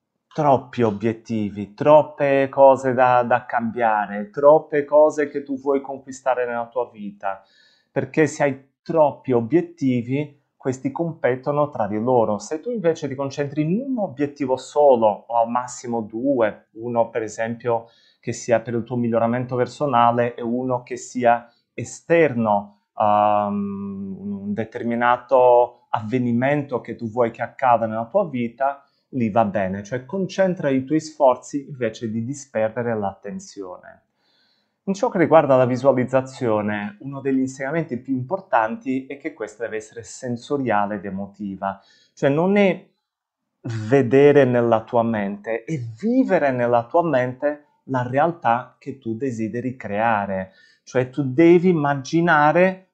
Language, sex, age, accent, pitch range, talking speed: Italian, male, 30-49, native, 115-150 Hz, 135 wpm